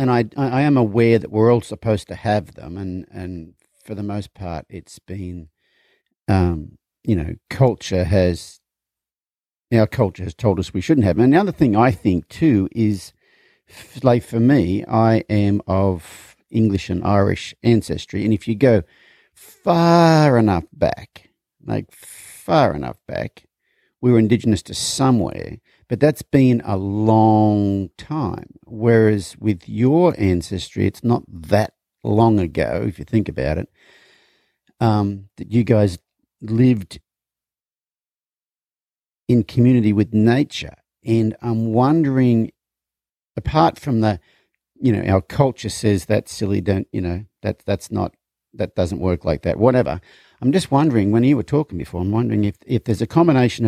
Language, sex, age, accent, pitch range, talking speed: English, male, 50-69, Australian, 95-120 Hz, 155 wpm